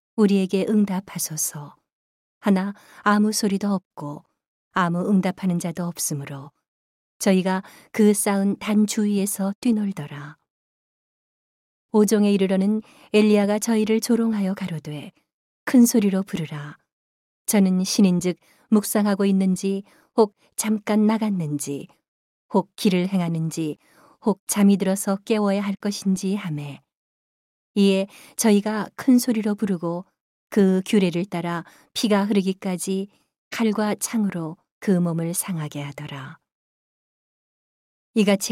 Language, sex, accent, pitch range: Korean, female, native, 175-210 Hz